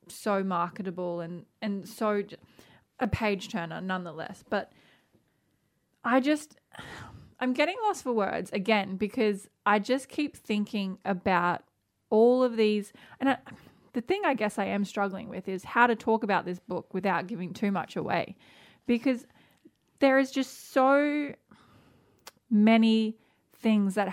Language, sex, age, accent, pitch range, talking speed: English, female, 20-39, Australian, 185-230 Hz, 140 wpm